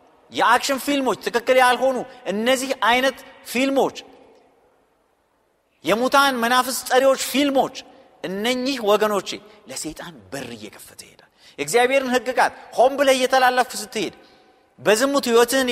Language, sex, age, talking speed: Amharic, male, 40-59, 90 wpm